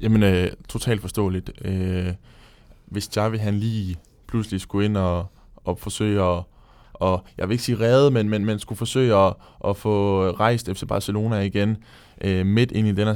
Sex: male